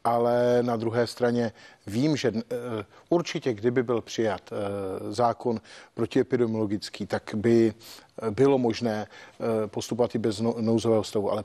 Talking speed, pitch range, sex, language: 115 wpm, 110-120 Hz, male, Czech